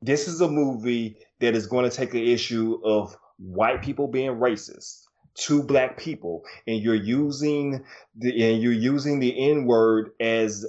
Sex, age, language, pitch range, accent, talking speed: male, 20-39, English, 110-130 Hz, American, 170 wpm